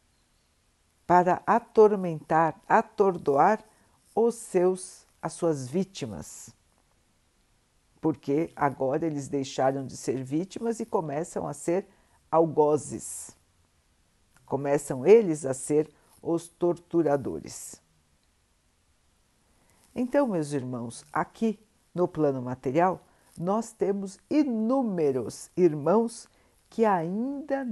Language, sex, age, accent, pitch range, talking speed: Portuguese, female, 60-79, Brazilian, 140-210 Hz, 85 wpm